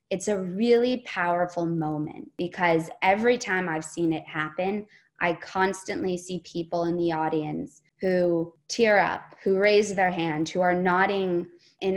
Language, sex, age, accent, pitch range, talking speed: English, female, 20-39, American, 170-200 Hz, 150 wpm